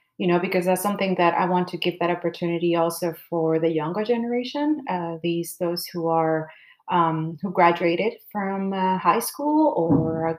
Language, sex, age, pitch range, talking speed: English, female, 30-49, 170-200 Hz, 180 wpm